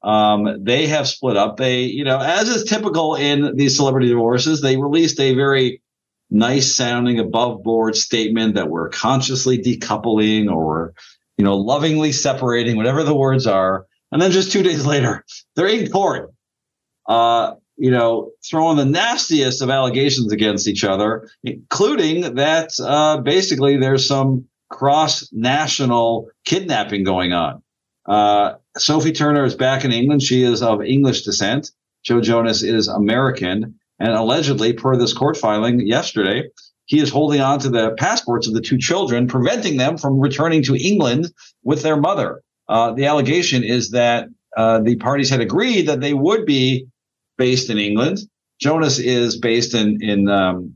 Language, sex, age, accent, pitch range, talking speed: English, male, 50-69, American, 115-150 Hz, 160 wpm